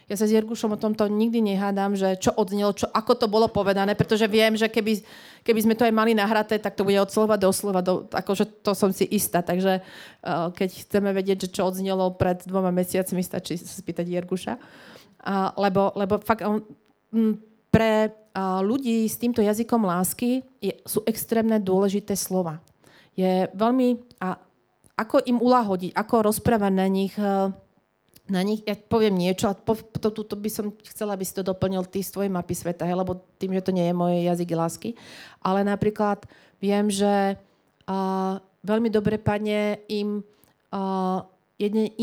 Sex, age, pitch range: female, 30-49, 190-220 Hz